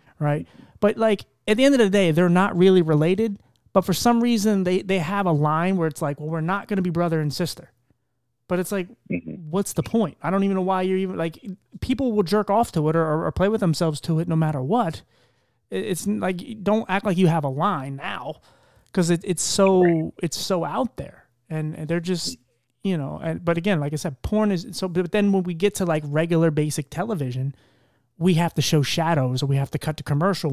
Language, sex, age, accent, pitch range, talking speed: English, male, 30-49, American, 155-215 Hz, 235 wpm